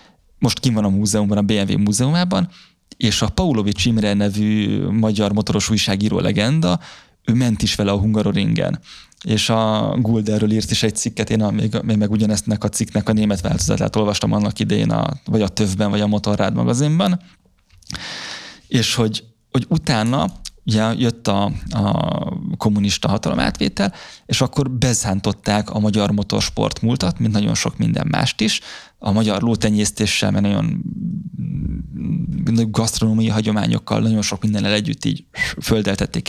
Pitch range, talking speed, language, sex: 105-115 Hz, 145 wpm, Hungarian, male